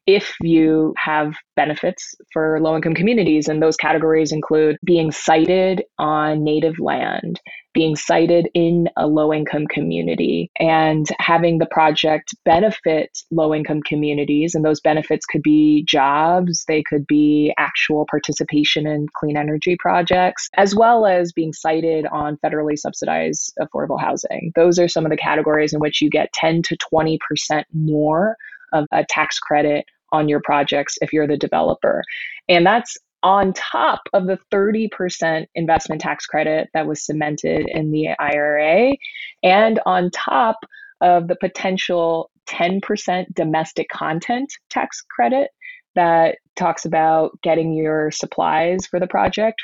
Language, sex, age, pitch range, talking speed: English, female, 20-39, 155-185 Hz, 145 wpm